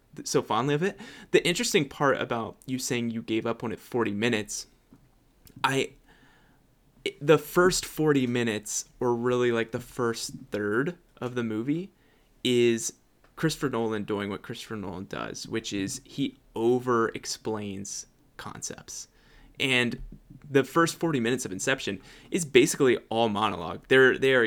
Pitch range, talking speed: 110-140 Hz, 140 wpm